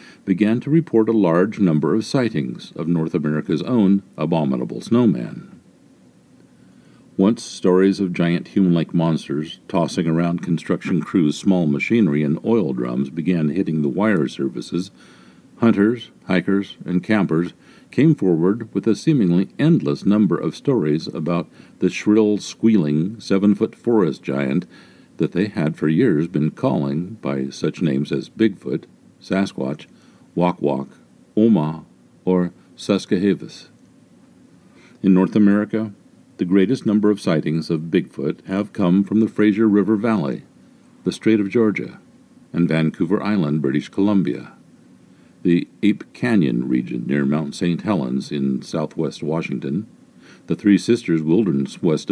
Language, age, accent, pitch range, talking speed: English, 50-69, American, 80-105 Hz, 130 wpm